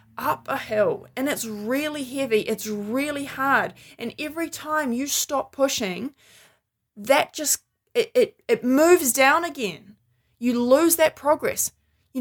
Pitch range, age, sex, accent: 215-290 Hz, 20-39, female, Australian